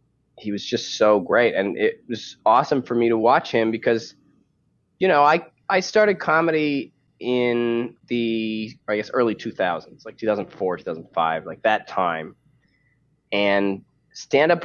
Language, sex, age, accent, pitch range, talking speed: English, male, 20-39, American, 105-130 Hz, 145 wpm